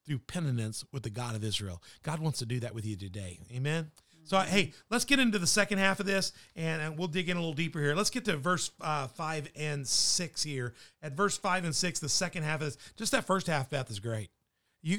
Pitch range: 135-175 Hz